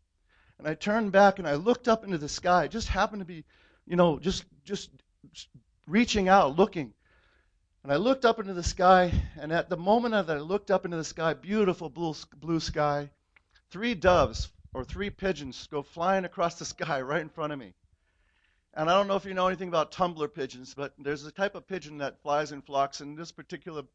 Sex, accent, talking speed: male, American, 215 wpm